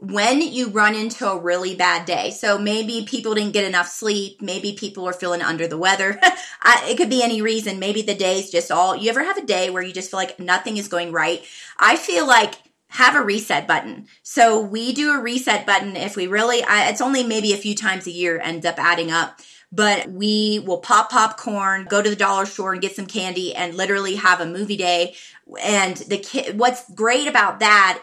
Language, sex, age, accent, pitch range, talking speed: English, female, 30-49, American, 185-220 Hz, 220 wpm